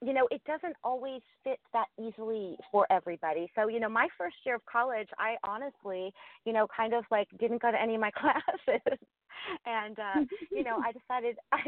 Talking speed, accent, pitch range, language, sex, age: 200 wpm, American, 195-250 Hz, English, female, 30-49